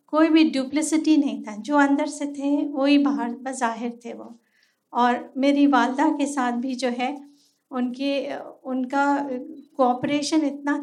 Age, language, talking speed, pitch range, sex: 50-69, Hindi, 150 wpm, 245-280 Hz, female